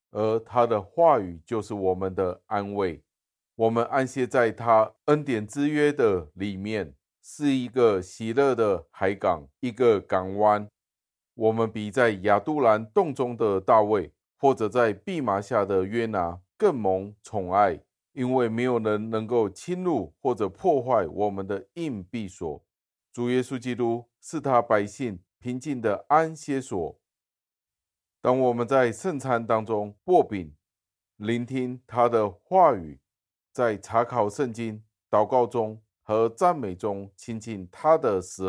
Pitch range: 90-120 Hz